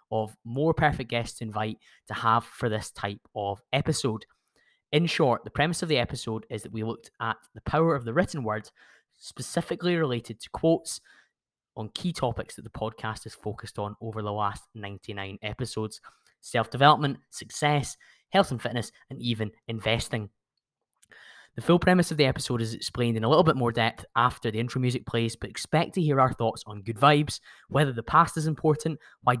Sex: male